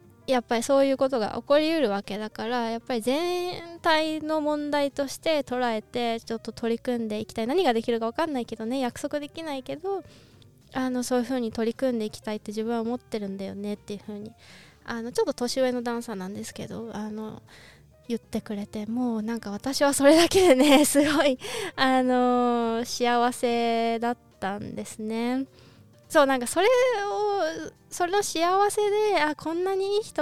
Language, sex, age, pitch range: Japanese, female, 20-39, 220-285 Hz